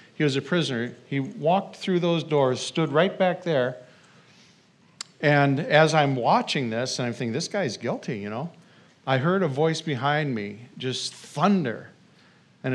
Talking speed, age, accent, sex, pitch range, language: 165 wpm, 50-69, American, male, 130-175 Hz, English